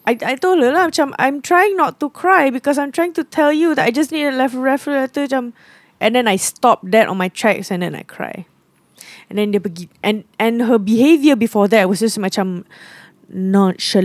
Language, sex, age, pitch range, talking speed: English, female, 20-39, 195-255 Hz, 210 wpm